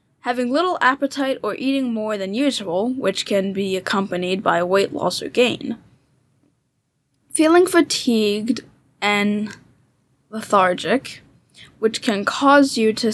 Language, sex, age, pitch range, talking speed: English, female, 10-29, 195-265 Hz, 120 wpm